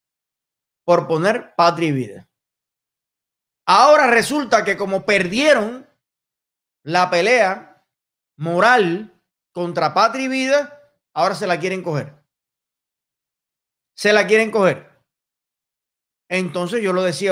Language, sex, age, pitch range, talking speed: Spanish, male, 30-49, 170-230 Hz, 105 wpm